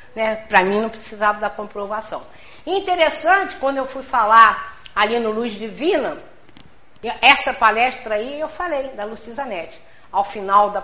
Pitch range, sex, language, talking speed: 215-275 Hz, female, Portuguese, 145 wpm